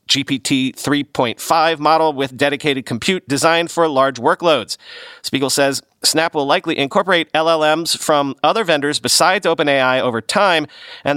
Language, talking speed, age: English, 135 wpm, 40-59